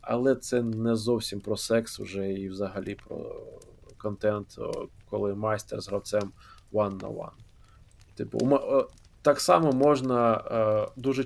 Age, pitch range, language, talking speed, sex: 20-39, 110-125 Hz, Ukrainian, 125 wpm, male